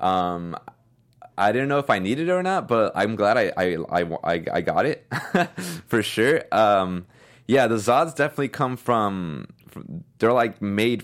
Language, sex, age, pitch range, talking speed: English, male, 20-39, 90-110 Hz, 175 wpm